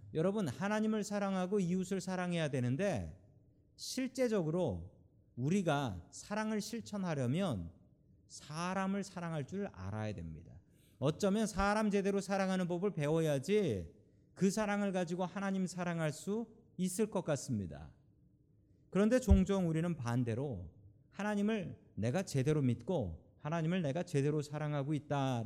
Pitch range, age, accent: 125-200 Hz, 40-59, native